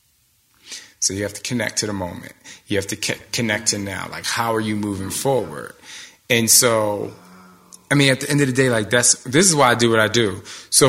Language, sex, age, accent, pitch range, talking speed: English, male, 20-39, American, 110-140 Hz, 230 wpm